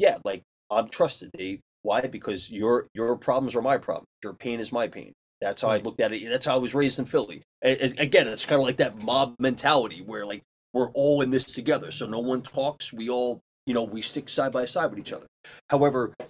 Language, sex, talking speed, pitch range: English, male, 240 wpm, 95-130 Hz